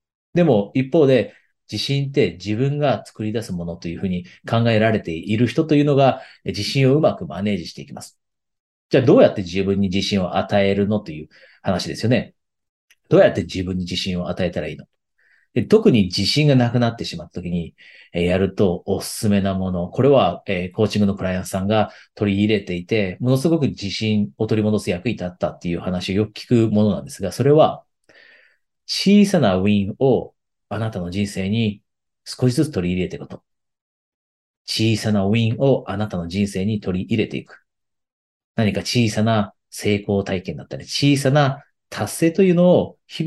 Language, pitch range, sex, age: Japanese, 95-120 Hz, male, 40-59